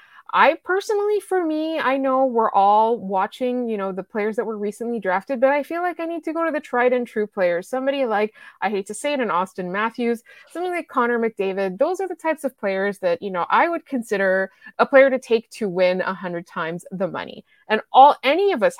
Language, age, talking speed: English, 20-39, 230 wpm